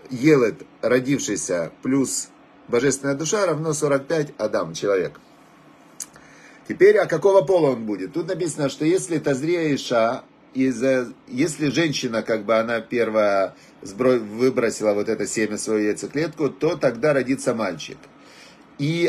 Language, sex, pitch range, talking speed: Russian, male, 125-160 Hz, 120 wpm